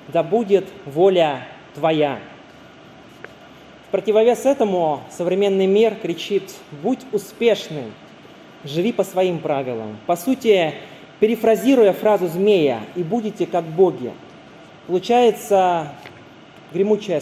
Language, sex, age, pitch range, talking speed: Russian, male, 20-39, 165-210 Hz, 95 wpm